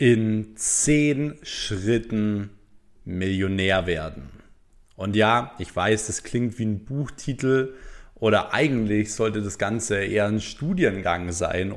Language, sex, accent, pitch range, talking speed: German, male, German, 105-120 Hz, 115 wpm